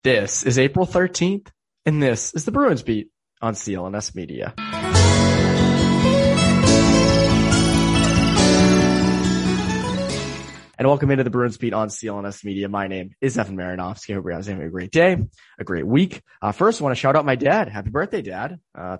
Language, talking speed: English, 160 wpm